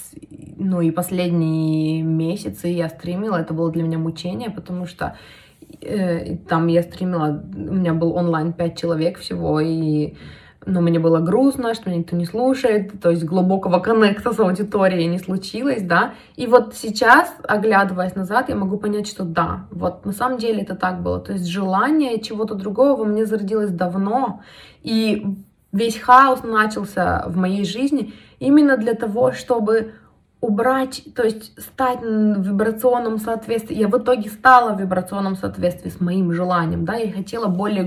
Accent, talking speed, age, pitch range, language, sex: native, 160 wpm, 20-39, 180-225 Hz, Russian, female